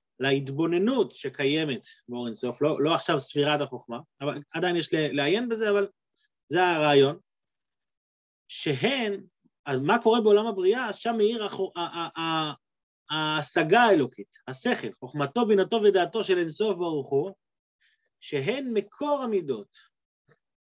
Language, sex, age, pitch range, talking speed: Hebrew, male, 30-49, 150-220 Hz, 115 wpm